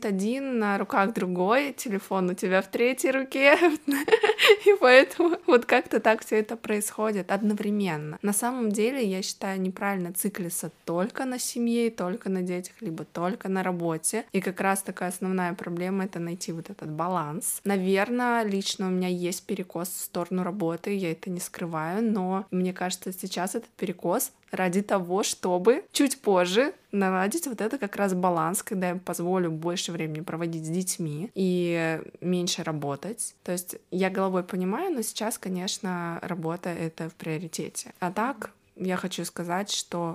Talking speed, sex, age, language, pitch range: 160 wpm, female, 20-39, Russian, 175-215 Hz